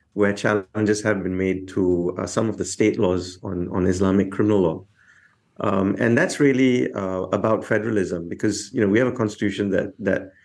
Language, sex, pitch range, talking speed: English, male, 95-110 Hz, 180 wpm